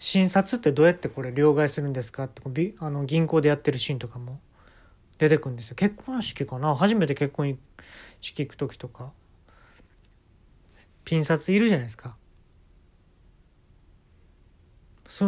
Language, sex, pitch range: Japanese, male, 100-160 Hz